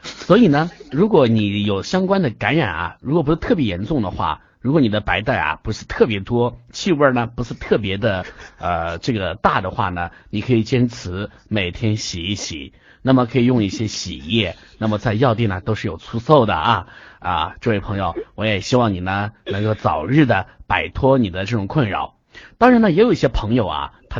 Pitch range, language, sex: 105-145 Hz, Chinese, male